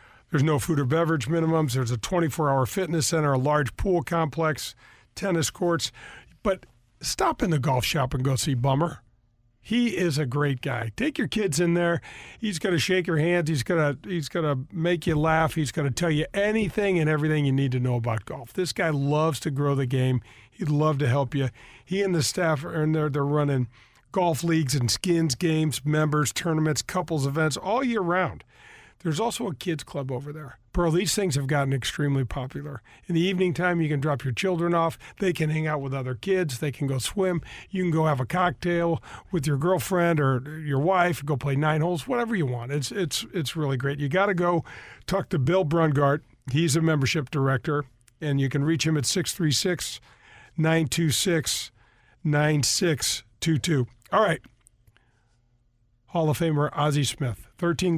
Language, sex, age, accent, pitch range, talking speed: English, male, 40-59, American, 135-170 Hz, 190 wpm